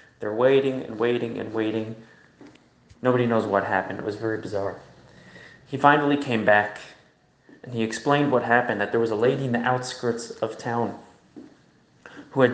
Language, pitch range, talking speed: English, 115-135 Hz, 165 wpm